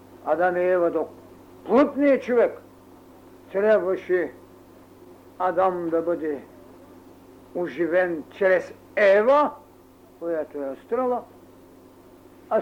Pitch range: 170-225 Hz